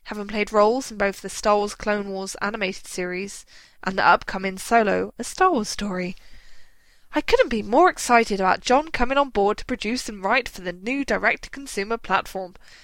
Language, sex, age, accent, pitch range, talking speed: English, female, 10-29, British, 195-245 Hz, 180 wpm